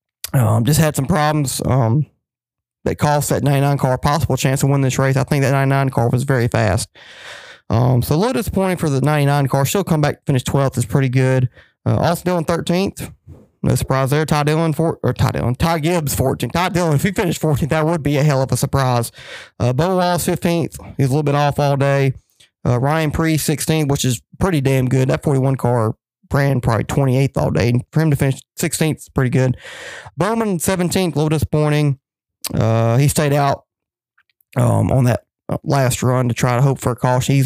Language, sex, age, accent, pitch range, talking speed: English, male, 20-39, American, 130-155 Hz, 210 wpm